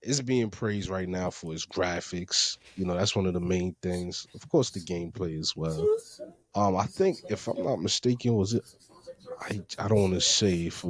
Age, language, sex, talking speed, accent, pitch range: 20-39, English, male, 215 wpm, American, 90-125 Hz